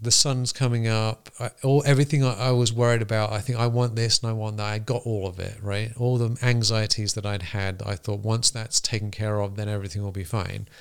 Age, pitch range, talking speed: 40-59, 105-120 Hz, 250 wpm